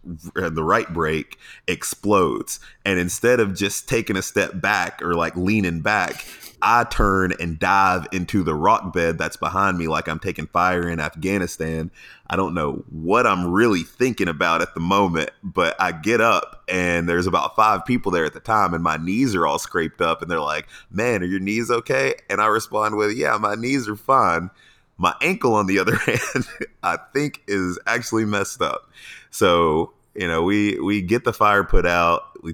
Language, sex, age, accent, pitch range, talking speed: English, male, 30-49, American, 80-100 Hz, 190 wpm